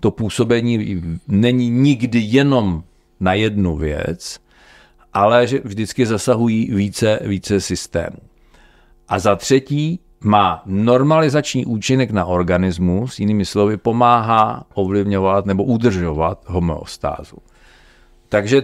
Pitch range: 95-115 Hz